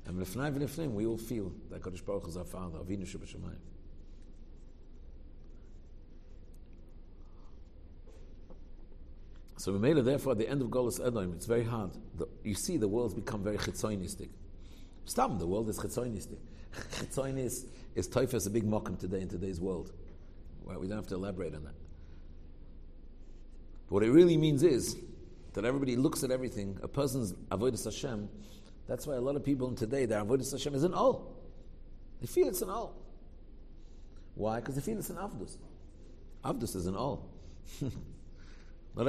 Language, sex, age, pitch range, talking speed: English, male, 60-79, 80-120 Hz, 160 wpm